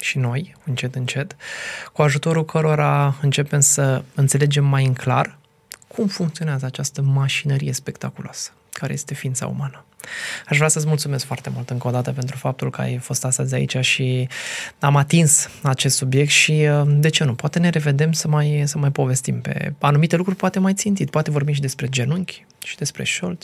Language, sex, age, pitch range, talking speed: Romanian, male, 20-39, 130-150 Hz, 175 wpm